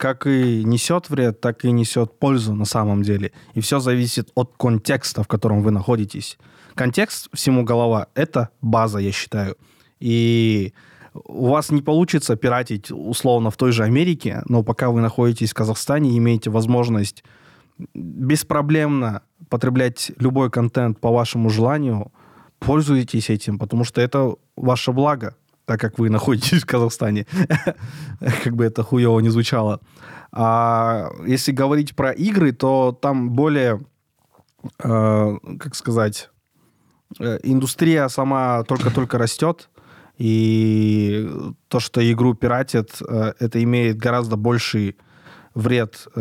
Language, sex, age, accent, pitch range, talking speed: Russian, male, 20-39, native, 110-130 Hz, 125 wpm